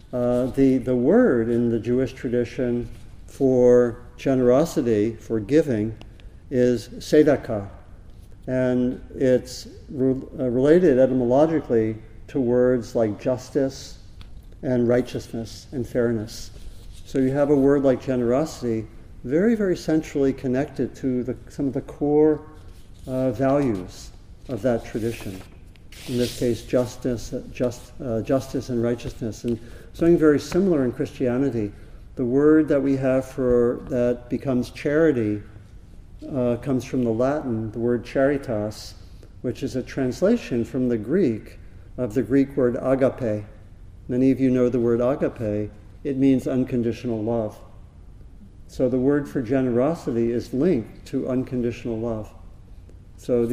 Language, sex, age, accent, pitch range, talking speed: English, male, 50-69, American, 110-135 Hz, 130 wpm